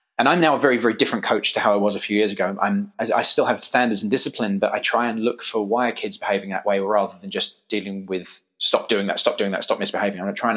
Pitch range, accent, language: 95-115 Hz, British, English